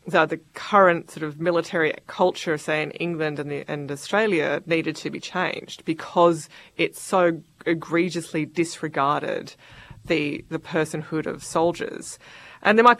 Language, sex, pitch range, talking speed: English, female, 155-185 Hz, 145 wpm